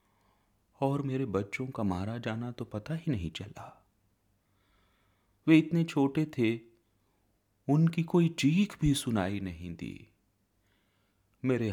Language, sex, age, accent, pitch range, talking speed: Hindi, male, 30-49, native, 95-120 Hz, 120 wpm